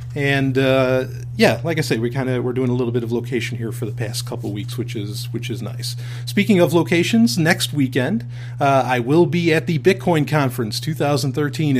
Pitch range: 120-135 Hz